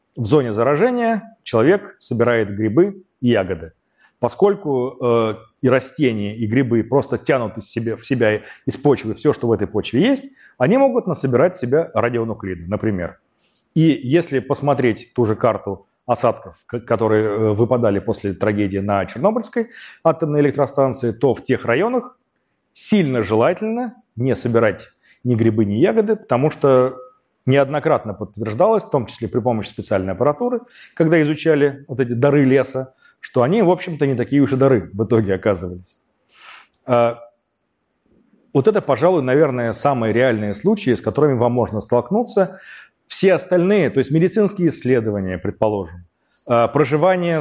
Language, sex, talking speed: Russian, male, 135 wpm